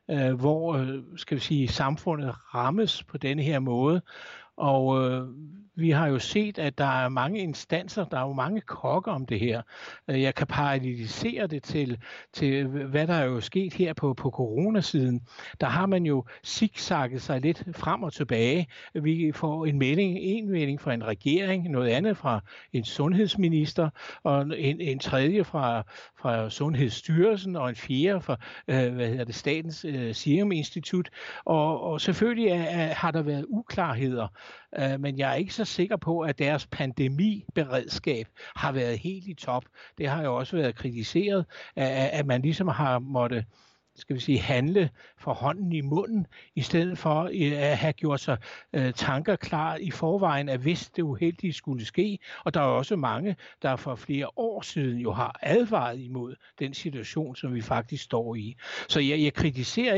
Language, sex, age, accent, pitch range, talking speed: Danish, male, 60-79, native, 130-170 Hz, 165 wpm